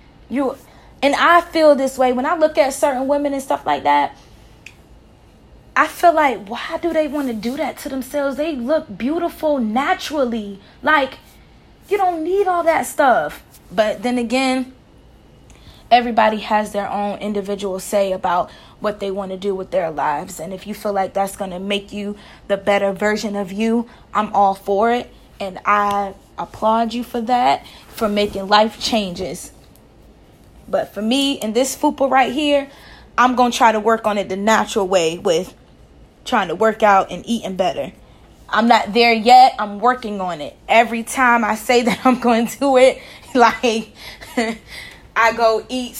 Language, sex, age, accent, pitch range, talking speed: English, female, 20-39, American, 200-260 Hz, 175 wpm